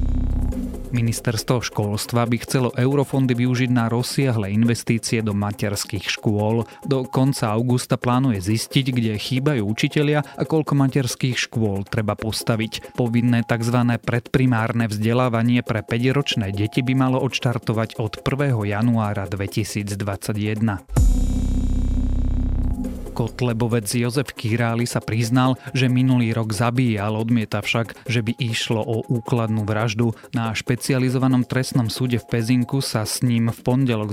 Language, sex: Slovak, male